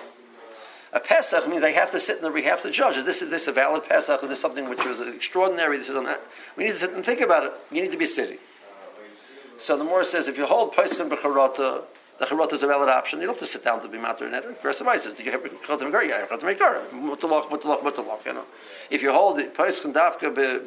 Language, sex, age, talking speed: English, male, 50-69, 245 wpm